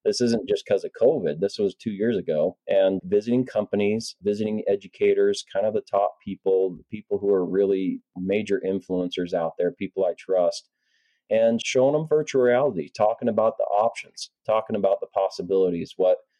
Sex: male